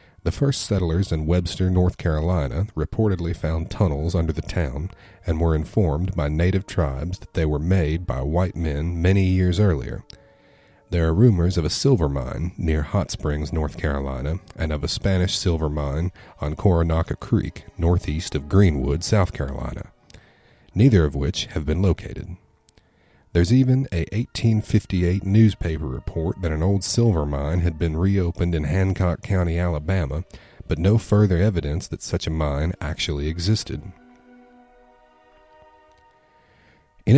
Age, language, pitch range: 40-59, English, 80-105 Hz